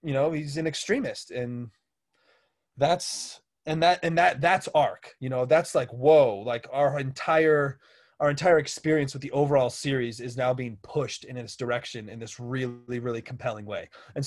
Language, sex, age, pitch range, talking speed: English, male, 20-39, 125-160 Hz, 175 wpm